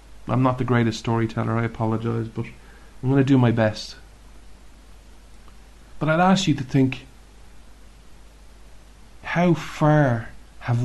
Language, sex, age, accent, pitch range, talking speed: English, male, 40-59, Irish, 110-130 Hz, 125 wpm